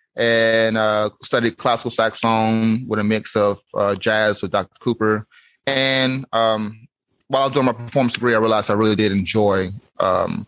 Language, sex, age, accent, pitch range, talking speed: English, male, 30-49, American, 110-130 Hz, 170 wpm